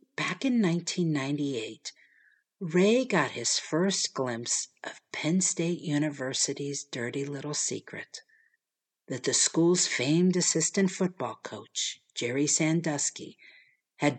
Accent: American